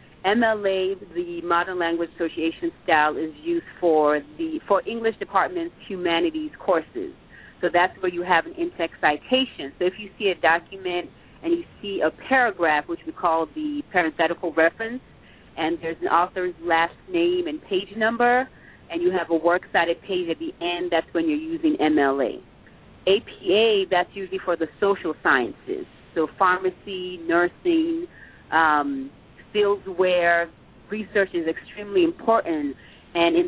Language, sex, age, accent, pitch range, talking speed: English, female, 30-49, American, 165-245 Hz, 150 wpm